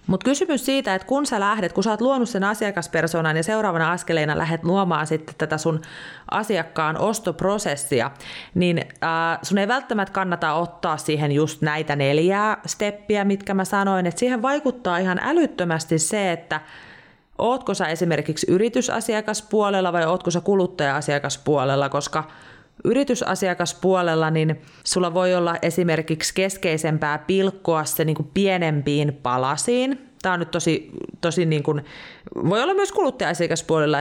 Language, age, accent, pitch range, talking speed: Finnish, 30-49, native, 155-195 Hz, 135 wpm